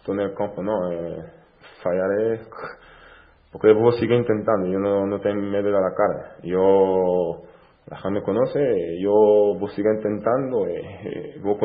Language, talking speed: Spanish, 155 wpm